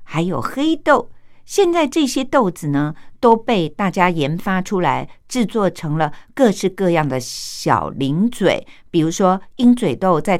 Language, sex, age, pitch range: Japanese, female, 50-69, 150-230 Hz